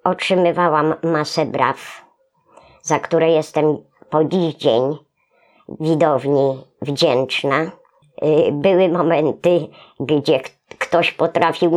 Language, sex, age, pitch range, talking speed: Polish, male, 50-69, 150-180 Hz, 80 wpm